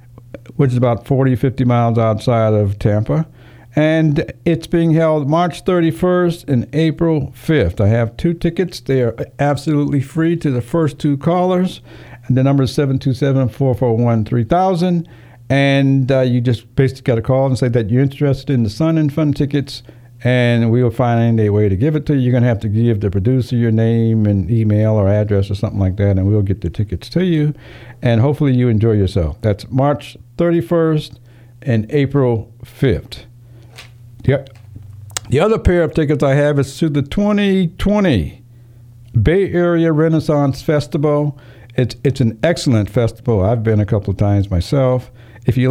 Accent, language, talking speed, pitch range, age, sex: American, English, 175 wpm, 115-145 Hz, 60-79, male